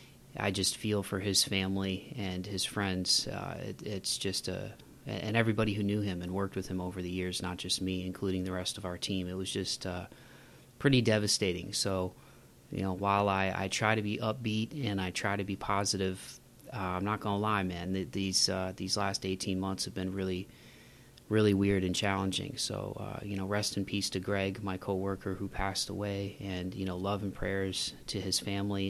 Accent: American